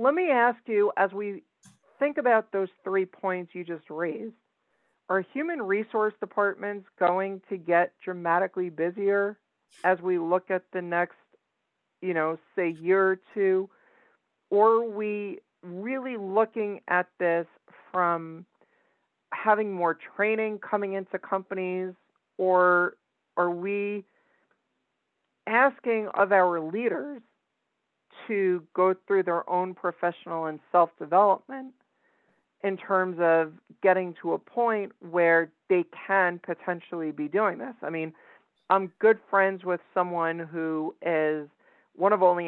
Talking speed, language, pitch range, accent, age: 125 wpm, English, 170-205 Hz, American, 50-69